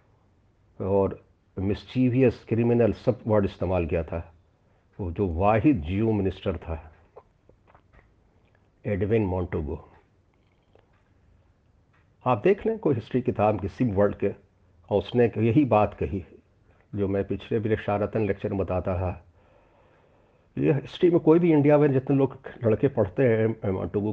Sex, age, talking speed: male, 50-69, 125 wpm